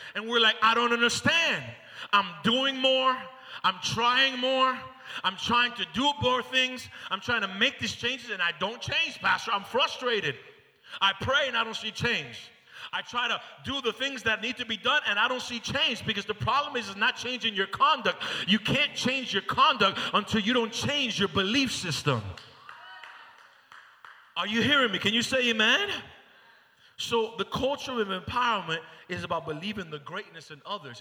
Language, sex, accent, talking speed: English, male, American, 180 wpm